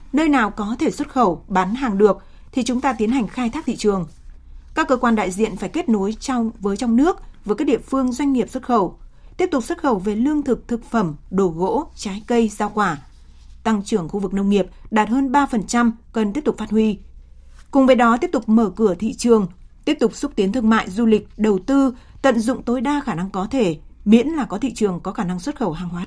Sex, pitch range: female, 200-255 Hz